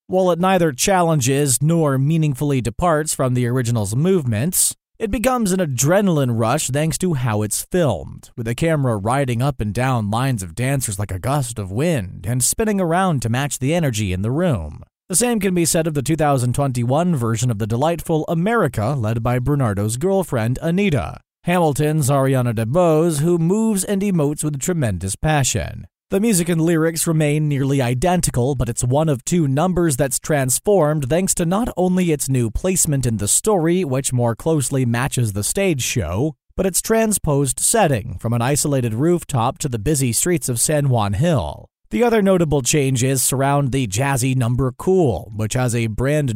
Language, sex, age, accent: English, male, 30-49, American